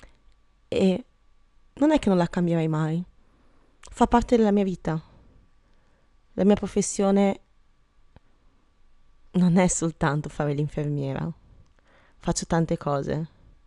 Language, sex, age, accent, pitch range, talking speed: Italian, female, 20-39, native, 155-190 Hz, 105 wpm